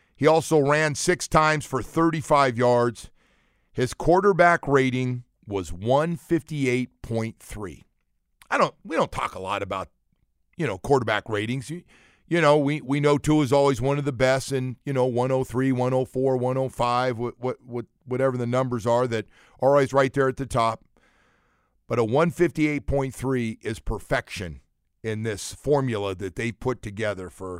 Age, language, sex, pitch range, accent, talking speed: 50-69, English, male, 115-145 Hz, American, 150 wpm